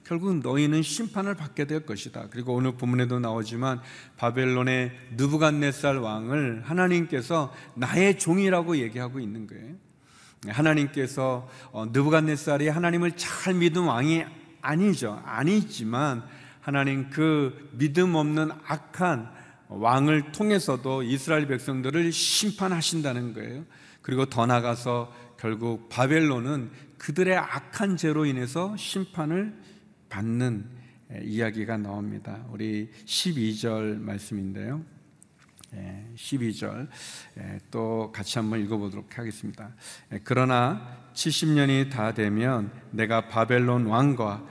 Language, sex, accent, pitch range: Korean, male, native, 115-150 Hz